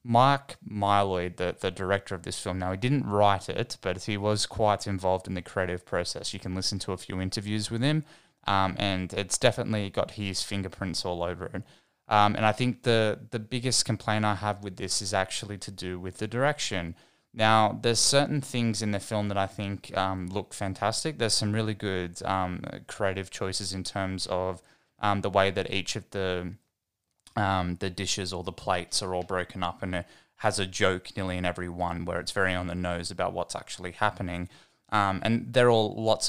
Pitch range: 95-110 Hz